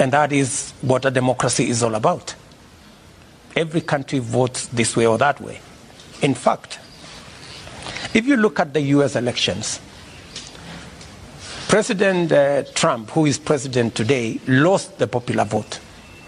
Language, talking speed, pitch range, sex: English, 135 wpm, 130-175 Hz, male